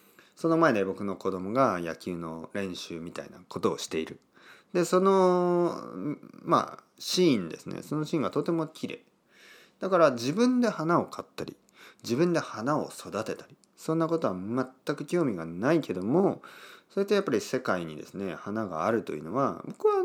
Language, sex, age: Japanese, male, 40-59